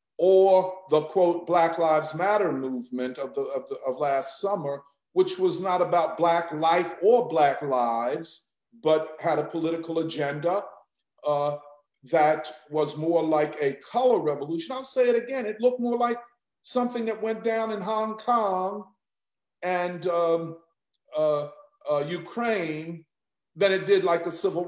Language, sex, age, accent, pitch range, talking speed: English, male, 50-69, American, 160-225 Hz, 150 wpm